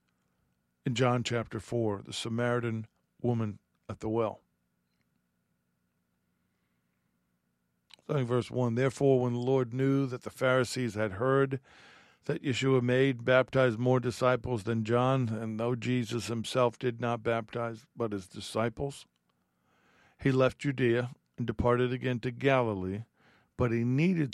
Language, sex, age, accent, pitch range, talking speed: English, male, 50-69, American, 95-130 Hz, 130 wpm